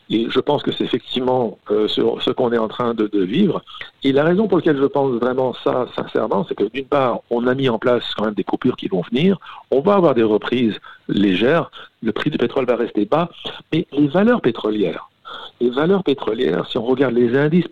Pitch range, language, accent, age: 120-150 Hz, French, French, 60-79